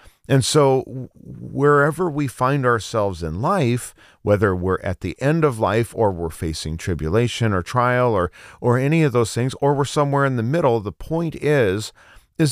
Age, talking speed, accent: 40-59, 175 wpm, American